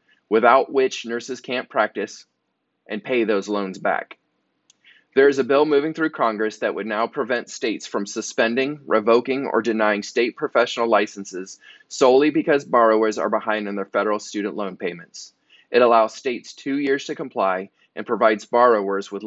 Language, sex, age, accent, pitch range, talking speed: English, male, 20-39, American, 105-135 Hz, 160 wpm